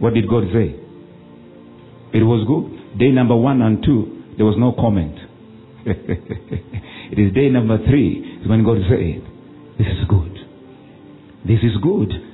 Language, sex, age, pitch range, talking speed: English, male, 50-69, 100-130 Hz, 145 wpm